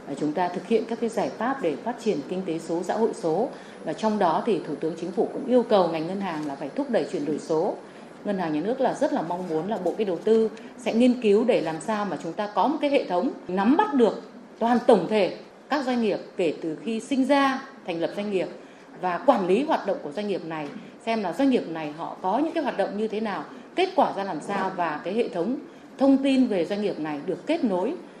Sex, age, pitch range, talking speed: female, 30-49, 175-240 Hz, 265 wpm